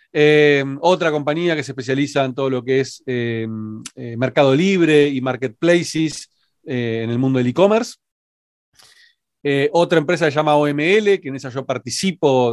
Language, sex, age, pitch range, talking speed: Spanish, male, 40-59, 130-165 Hz, 170 wpm